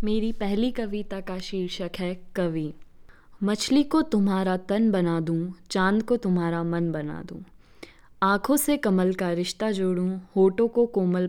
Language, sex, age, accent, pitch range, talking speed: Hindi, female, 20-39, native, 175-205 Hz, 150 wpm